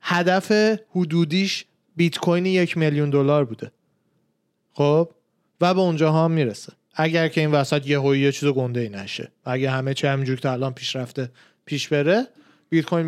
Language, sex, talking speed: Persian, male, 165 wpm